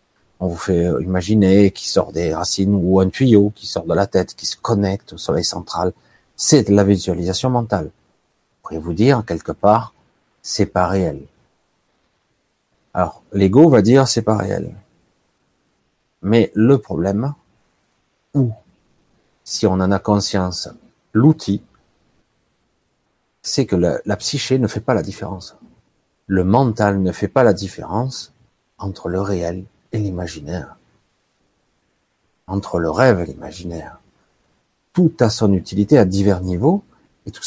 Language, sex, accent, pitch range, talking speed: French, male, French, 95-110 Hz, 145 wpm